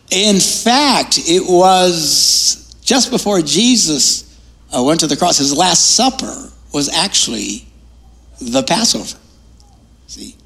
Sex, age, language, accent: male, 60-79, English, American